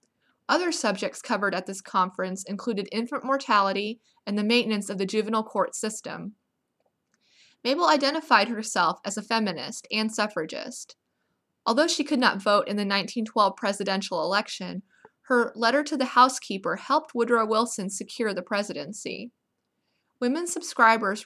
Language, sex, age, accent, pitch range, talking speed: English, female, 20-39, American, 200-250 Hz, 135 wpm